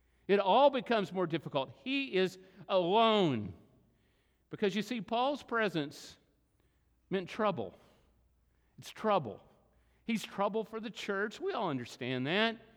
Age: 50-69